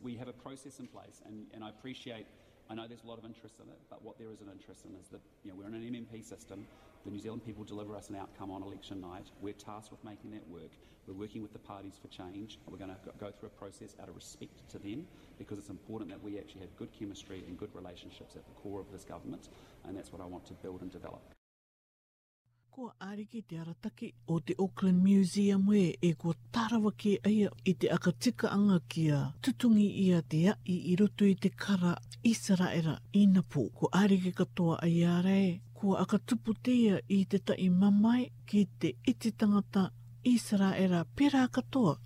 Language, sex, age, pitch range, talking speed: English, male, 40-59, 120-185 Hz, 205 wpm